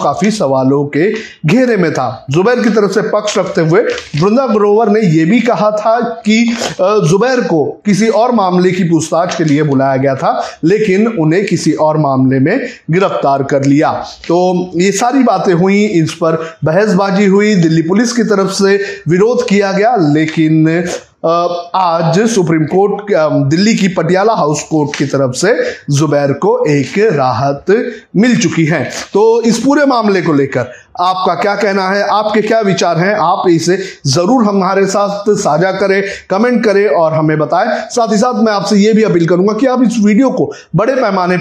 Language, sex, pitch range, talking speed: Hindi, male, 155-210 Hz, 170 wpm